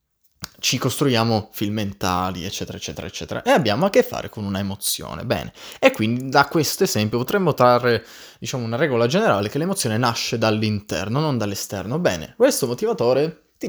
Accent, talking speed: native, 160 wpm